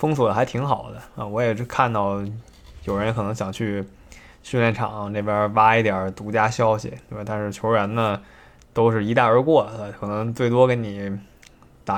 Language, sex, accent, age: Chinese, male, native, 20-39